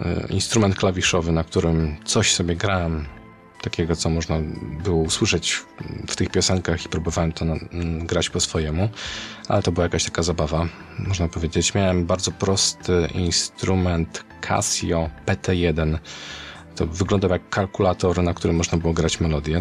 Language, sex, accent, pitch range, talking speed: Polish, male, native, 85-95 Hz, 140 wpm